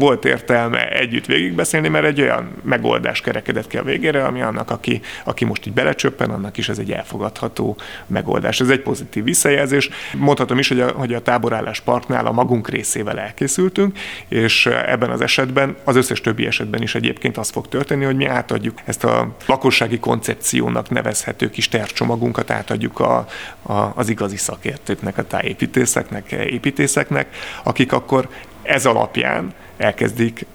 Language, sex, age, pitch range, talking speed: Hungarian, male, 30-49, 115-135 Hz, 155 wpm